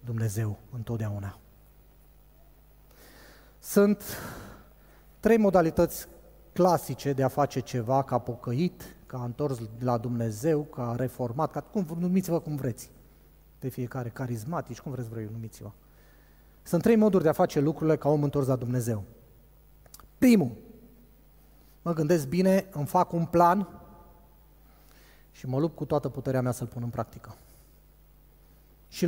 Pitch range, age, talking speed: 120-160 Hz, 30-49, 130 wpm